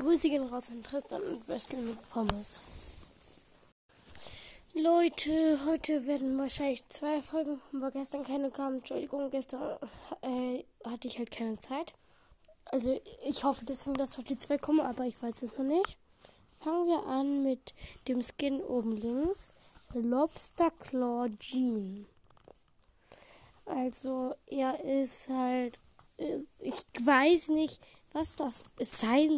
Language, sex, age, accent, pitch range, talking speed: German, female, 10-29, German, 235-280 Hz, 130 wpm